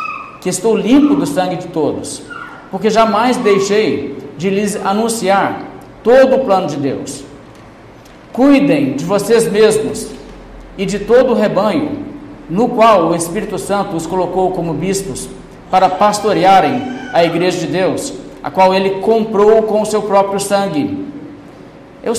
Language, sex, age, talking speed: Portuguese, male, 50-69, 140 wpm